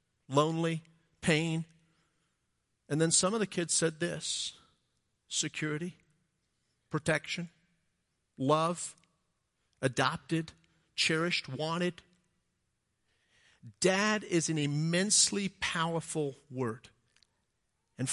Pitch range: 140-170 Hz